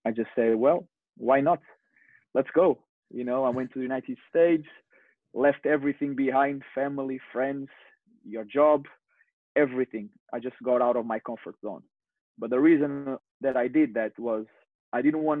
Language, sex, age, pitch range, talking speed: English, male, 30-49, 125-145 Hz, 170 wpm